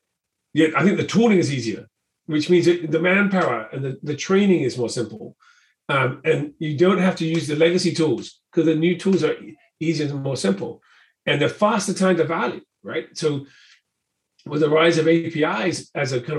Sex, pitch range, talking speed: male, 135-180 Hz, 195 wpm